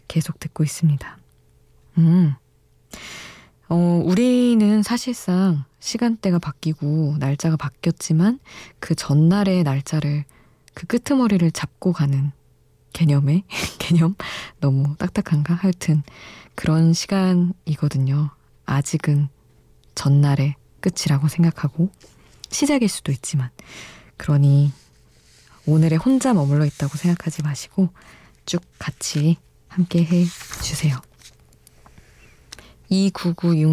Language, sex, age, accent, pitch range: Korean, female, 20-39, native, 150-180 Hz